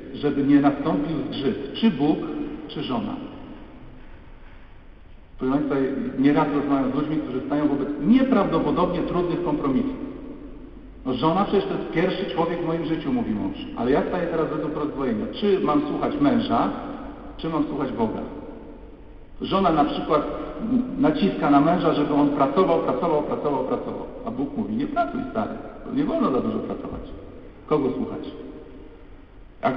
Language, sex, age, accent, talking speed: Polish, male, 50-69, native, 145 wpm